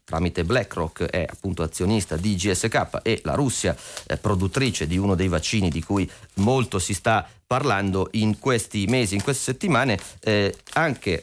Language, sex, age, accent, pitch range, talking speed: Italian, male, 30-49, native, 95-120 Hz, 160 wpm